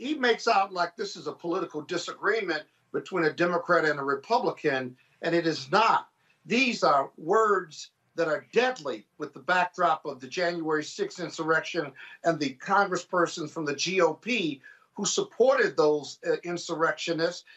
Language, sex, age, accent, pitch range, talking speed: English, male, 50-69, American, 165-240 Hz, 150 wpm